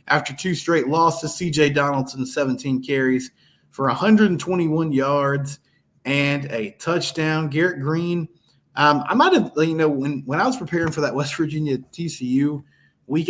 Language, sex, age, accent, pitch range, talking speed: English, male, 20-39, American, 120-150 Hz, 150 wpm